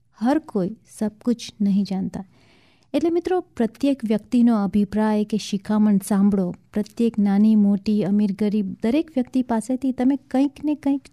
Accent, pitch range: Indian, 205-245 Hz